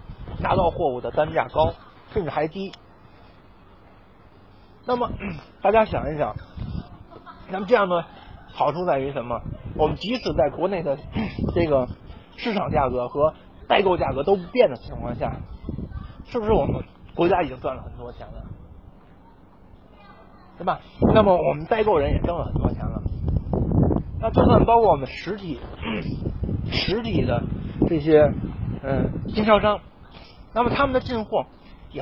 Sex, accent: male, native